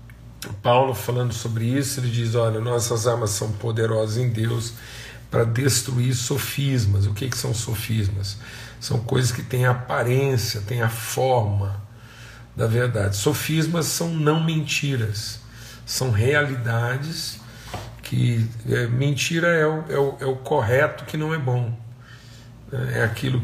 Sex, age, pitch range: male, 50-69, 115-130 Hz